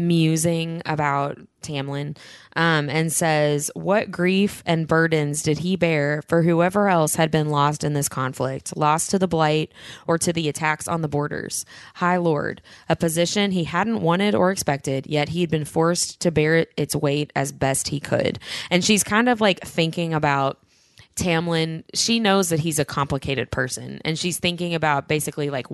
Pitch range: 145-175 Hz